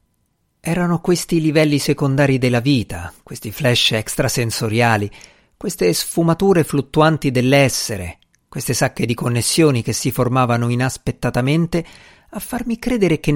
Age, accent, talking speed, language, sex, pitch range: 50-69, native, 110 wpm, Italian, male, 115-155 Hz